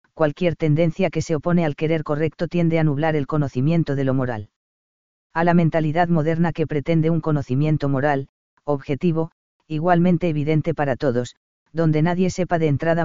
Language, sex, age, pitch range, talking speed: Spanish, female, 40-59, 145-170 Hz, 160 wpm